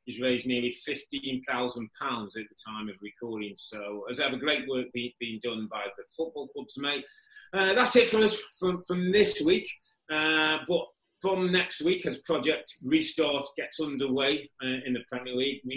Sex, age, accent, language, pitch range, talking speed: male, 30-49, British, English, 125-175 Hz, 180 wpm